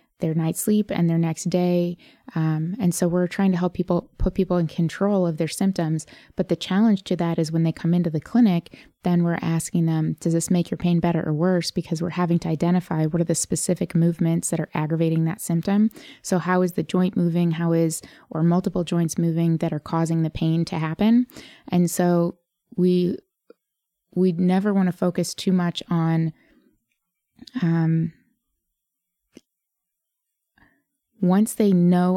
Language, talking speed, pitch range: English, 175 wpm, 165-185 Hz